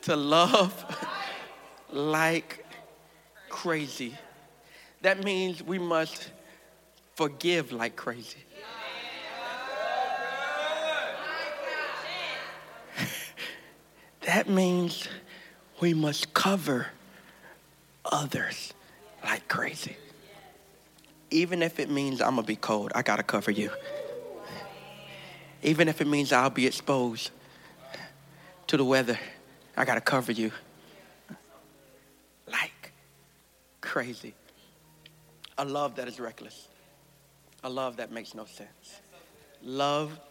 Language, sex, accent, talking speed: English, male, American, 90 wpm